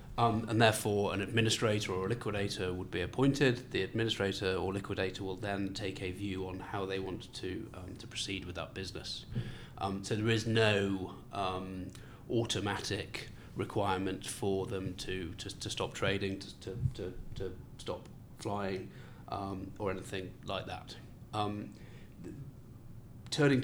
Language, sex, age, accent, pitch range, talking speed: English, male, 30-49, British, 100-115 Hz, 145 wpm